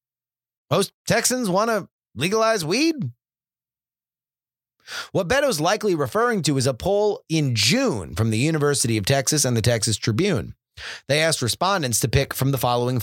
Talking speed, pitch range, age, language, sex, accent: 150 wpm, 115-150 Hz, 30-49, English, male, American